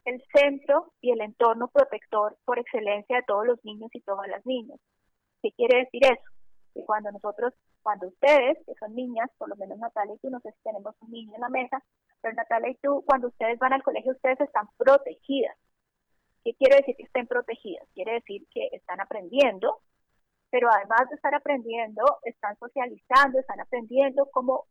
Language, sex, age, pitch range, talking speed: Spanish, female, 30-49, 225-280 Hz, 185 wpm